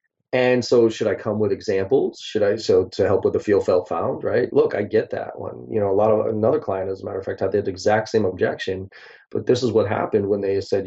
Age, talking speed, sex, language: 30-49, 265 wpm, male, English